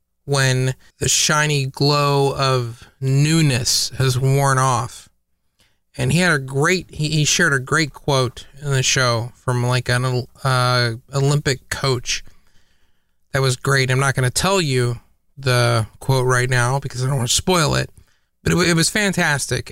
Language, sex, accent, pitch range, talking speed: English, male, American, 125-150 Hz, 165 wpm